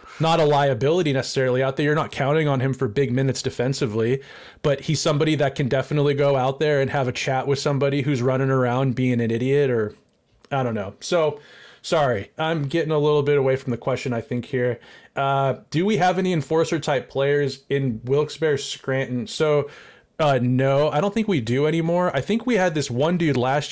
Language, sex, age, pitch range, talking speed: English, male, 20-39, 125-150 Hz, 205 wpm